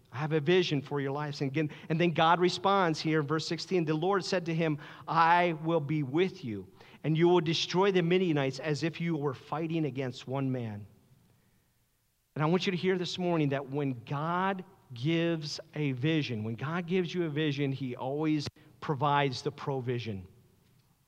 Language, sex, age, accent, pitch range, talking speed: English, male, 50-69, American, 150-200 Hz, 190 wpm